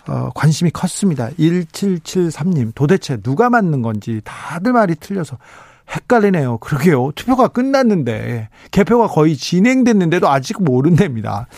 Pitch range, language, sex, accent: 130-195 Hz, Korean, male, native